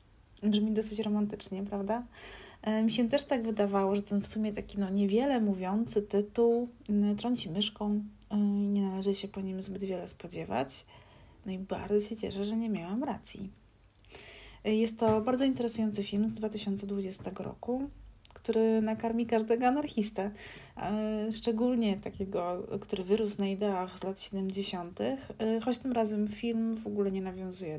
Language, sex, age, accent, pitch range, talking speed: Polish, female, 30-49, native, 200-235 Hz, 145 wpm